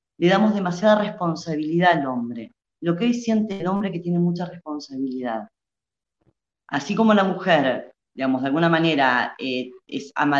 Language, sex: Spanish, female